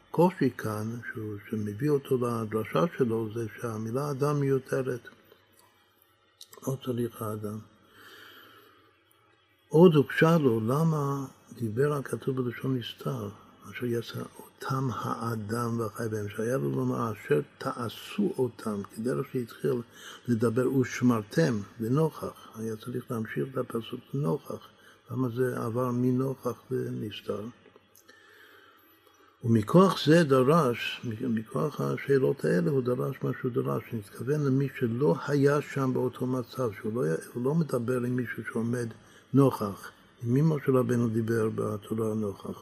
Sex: male